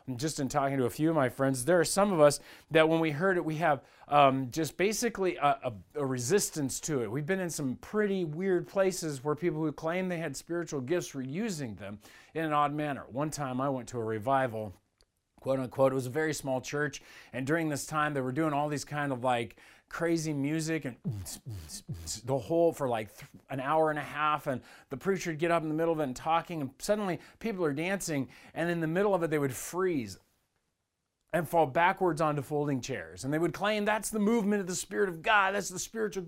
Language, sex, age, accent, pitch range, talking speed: English, male, 40-59, American, 135-170 Hz, 230 wpm